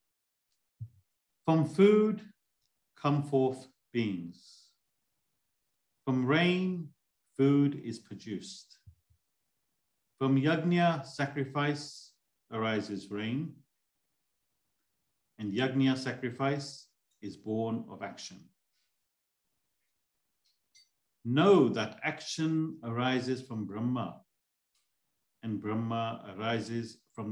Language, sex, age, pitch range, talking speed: English, male, 50-69, 105-140 Hz, 70 wpm